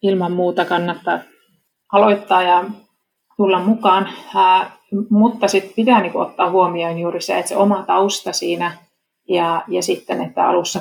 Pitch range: 170-190 Hz